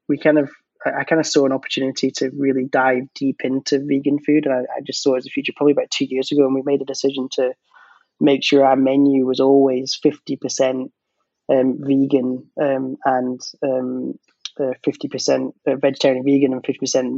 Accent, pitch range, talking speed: British, 130-145 Hz, 190 wpm